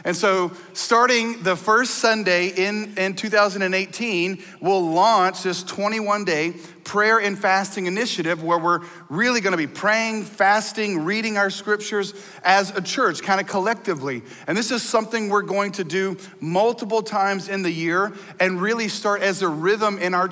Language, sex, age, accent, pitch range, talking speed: English, male, 40-59, American, 185-220 Hz, 160 wpm